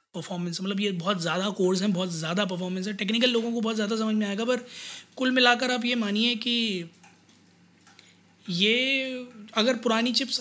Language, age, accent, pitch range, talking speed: Hindi, 20-39, native, 195-235 Hz, 175 wpm